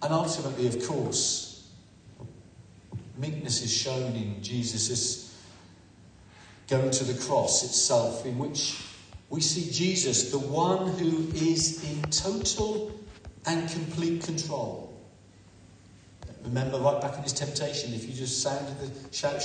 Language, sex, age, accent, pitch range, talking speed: English, male, 50-69, British, 110-155 Hz, 125 wpm